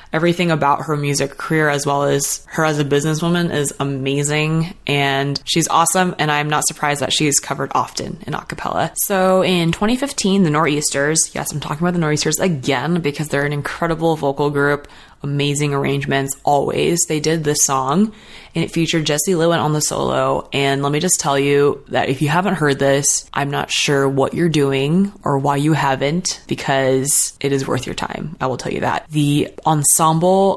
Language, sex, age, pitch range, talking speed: English, female, 20-39, 140-165 Hz, 185 wpm